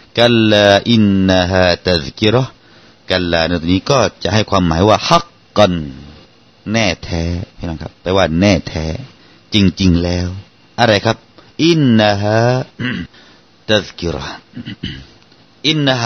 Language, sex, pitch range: Thai, male, 90-110 Hz